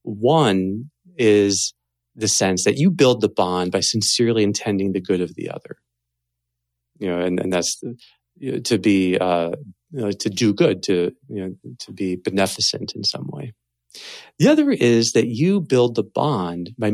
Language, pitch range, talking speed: English, 90-120 Hz, 180 wpm